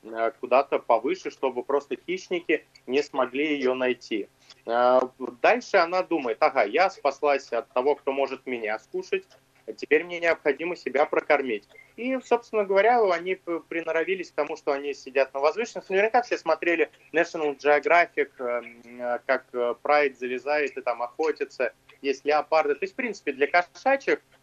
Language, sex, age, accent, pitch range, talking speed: Russian, male, 20-39, native, 135-210 Hz, 140 wpm